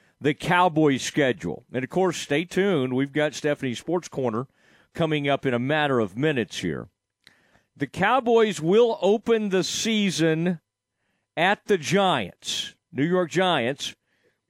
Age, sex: 40-59, male